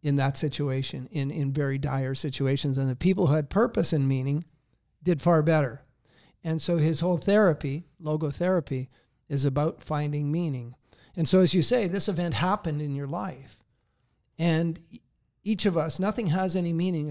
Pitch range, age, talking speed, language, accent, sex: 145-170 Hz, 50-69, 170 wpm, English, American, male